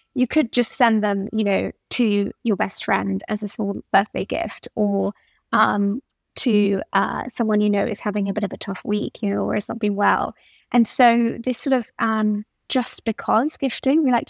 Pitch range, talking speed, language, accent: 215-250 Hz, 205 wpm, English, British